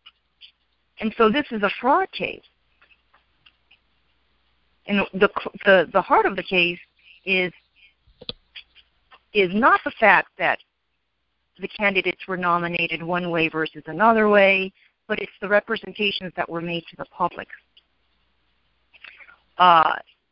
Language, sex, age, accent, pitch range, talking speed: English, female, 50-69, American, 140-200 Hz, 120 wpm